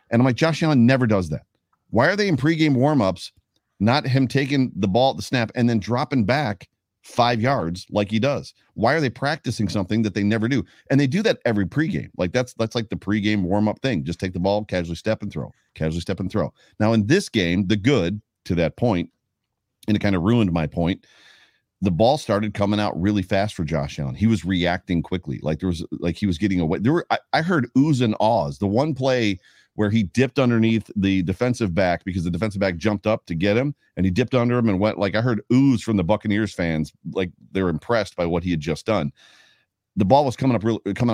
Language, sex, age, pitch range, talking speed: English, male, 40-59, 90-120 Hz, 240 wpm